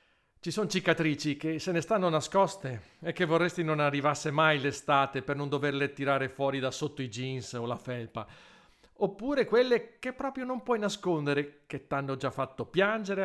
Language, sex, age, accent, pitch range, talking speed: Italian, male, 40-59, native, 130-180 Hz, 175 wpm